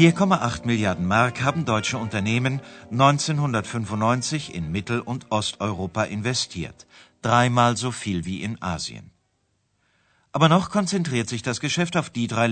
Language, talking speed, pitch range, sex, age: Bulgarian, 130 wpm, 105-135 Hz, male, 50-69